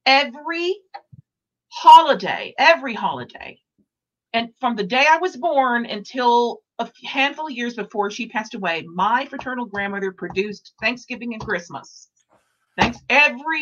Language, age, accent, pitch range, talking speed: English, 50-69, American, 205-270 Hz, 130 wpm